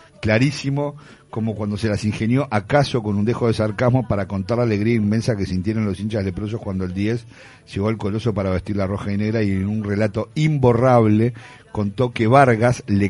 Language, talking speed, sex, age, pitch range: Spanish, 200 wpm, male, 50-69, 100-125 Hz